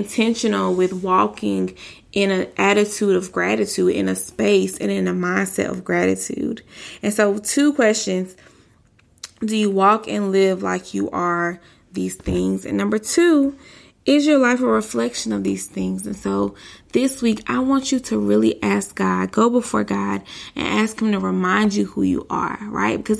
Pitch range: 170-225 Hz